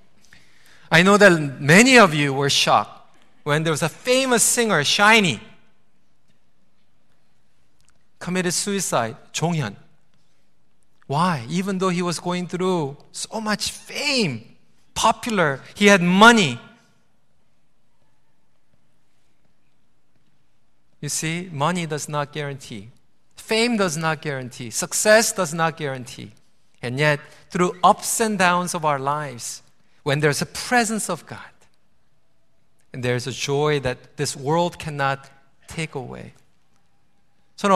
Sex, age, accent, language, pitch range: male, 40-59, native, Korean, 145-200 Hz